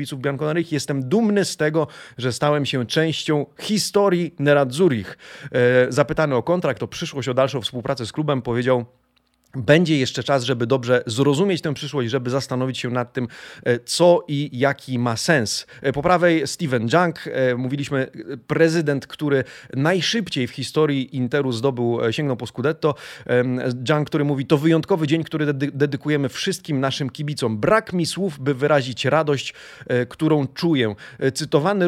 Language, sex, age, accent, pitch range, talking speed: Polish, male, 30-49, native, 130-165 Hz, 140 wpm